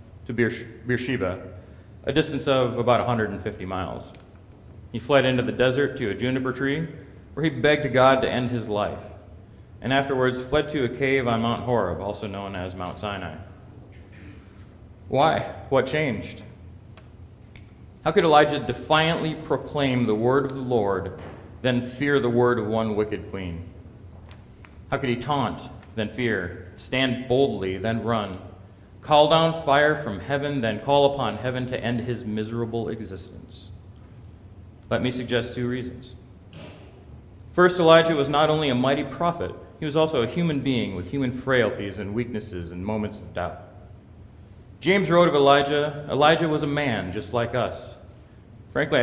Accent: American